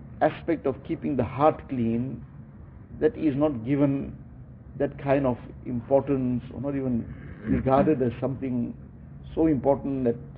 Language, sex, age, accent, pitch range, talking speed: English, male, 50-69, Indian, 125-145 Hz, 135 wpm